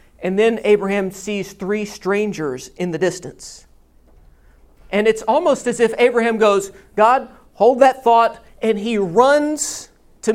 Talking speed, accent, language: 140 wpm, American, English